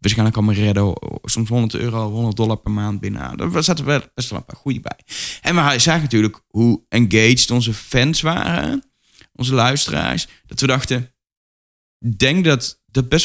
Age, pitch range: 20-39, 100-130 Hz